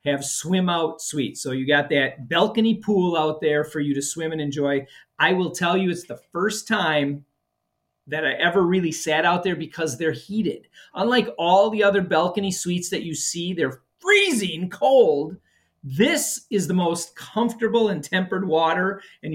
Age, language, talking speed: 40-59, English, 175 wpm